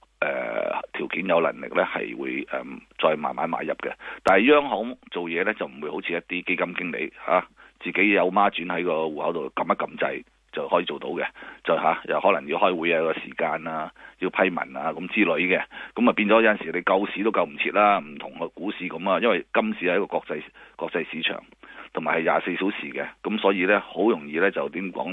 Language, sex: Chinese, male